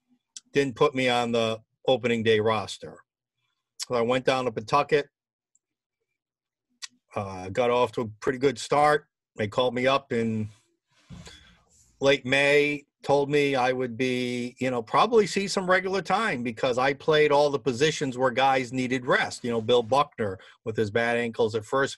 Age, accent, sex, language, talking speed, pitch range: 40-59, American, male, English, 165 wpm, 115-140 Hz